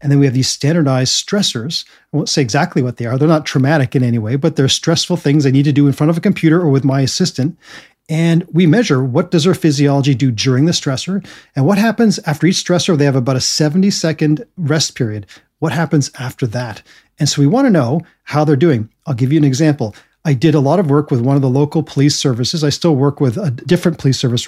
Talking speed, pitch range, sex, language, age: 250 wpm, 135-165 Hz, male, English, 40-59